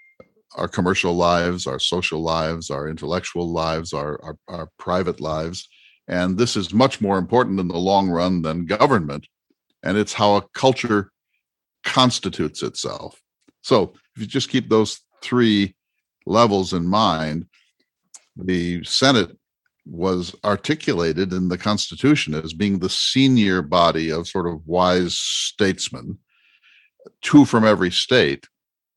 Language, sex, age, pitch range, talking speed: English, male, 50-69, 85-110 Hz, 130 wpm